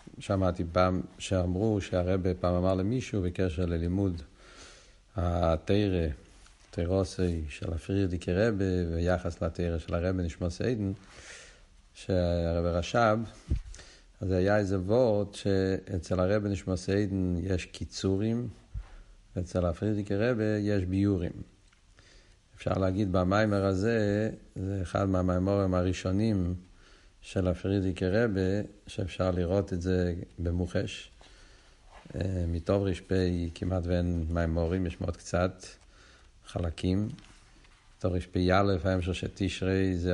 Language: Hebrew